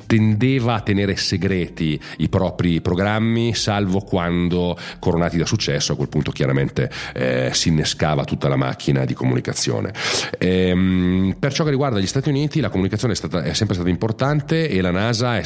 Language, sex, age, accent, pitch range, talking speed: Italian, male, 40-59, native, 80-115 Hz, 165 wpm